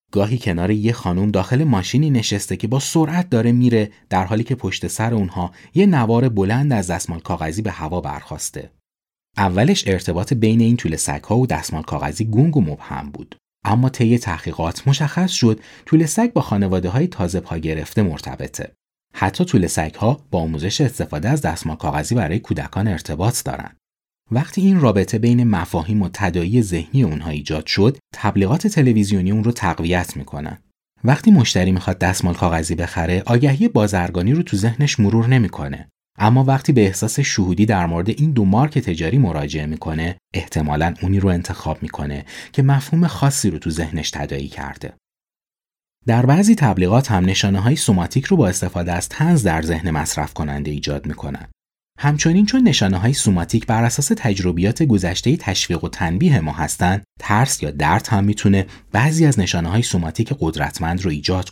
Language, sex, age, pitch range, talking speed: Persian, male, 30-49, 85-125 Hz, 165 wpm